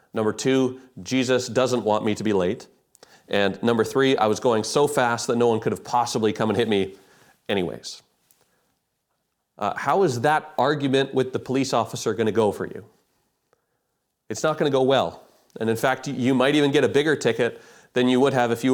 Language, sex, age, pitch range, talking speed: English, male, 30-49, 120-155 Hz, 205 wpm